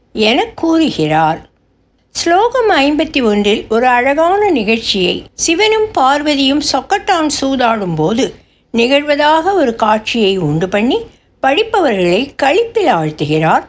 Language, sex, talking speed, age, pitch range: Tamil, female, 90 wpm, 60-79, 190-295 Hz